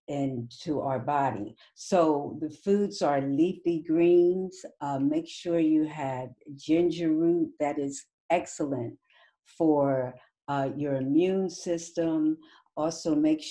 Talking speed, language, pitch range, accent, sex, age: 120 wpm, English, 145-185 Hz, American, female, 60-79